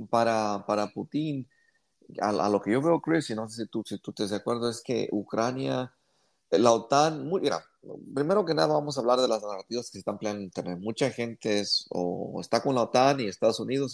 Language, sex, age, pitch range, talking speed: English, male, 30-49, 100-135 Hz, 225 wpm